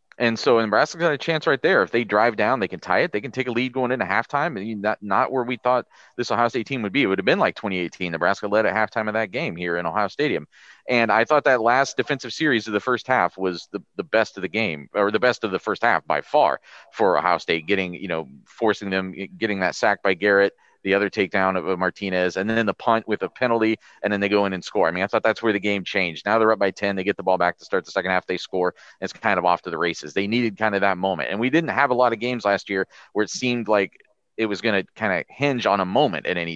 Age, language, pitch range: 40-59, English, 95-130 Hz